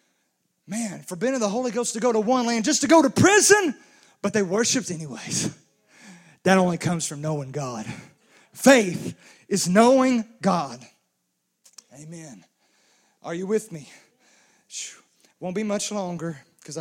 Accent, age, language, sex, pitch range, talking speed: American, 30-49, English, male, 160-195 Hz, 140 wpm